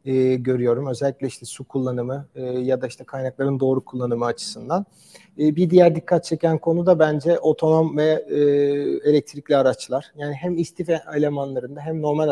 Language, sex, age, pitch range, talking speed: English, male, 40-59, 140-170 Hz, 160 wpm